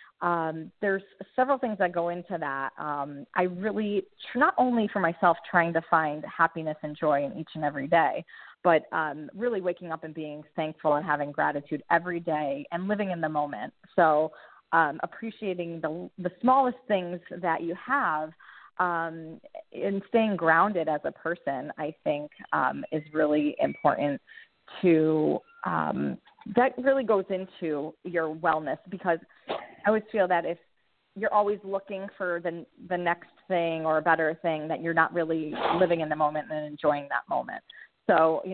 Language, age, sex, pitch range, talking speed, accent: English, 30-49, female, 155-200 Hz, 170 wpm, American